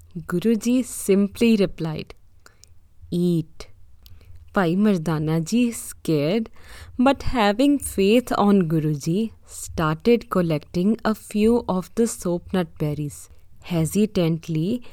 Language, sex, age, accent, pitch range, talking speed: English, female, 20-39, Indian, 160-220 Hz, 90 wpm